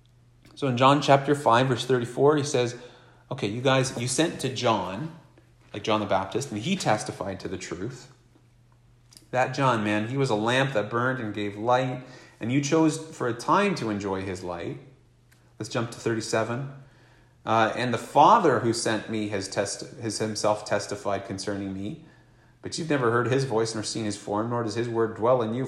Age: 30-49